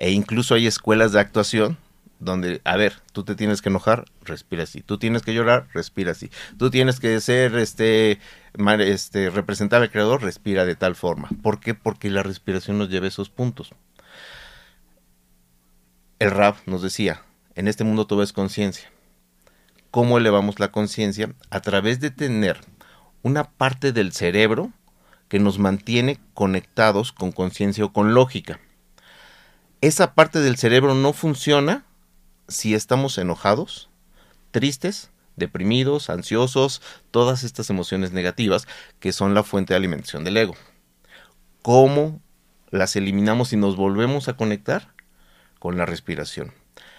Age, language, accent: 50-69, Spanish, Mexican